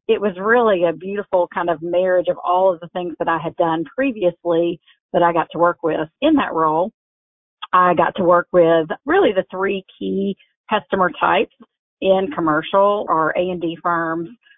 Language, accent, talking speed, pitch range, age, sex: English, American, 185 wpm, 170-195 Hz, 40-59, female